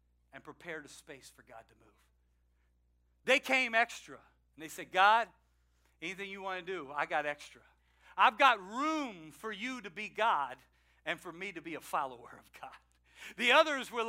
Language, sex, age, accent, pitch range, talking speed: English, male, 50-69, American, 160-250 Hz, 185 wpm